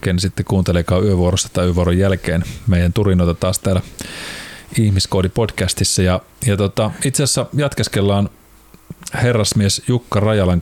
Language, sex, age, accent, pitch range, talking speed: Finnish, male, 30-49, native, 95-110 Hz, 125 wpm